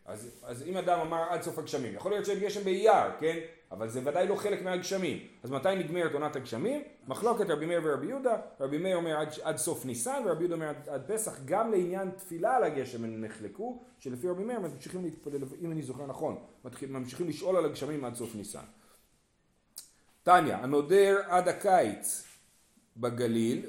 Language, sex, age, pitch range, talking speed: Hebrew, male, 40-59, 135-200 Hz, 175 wpm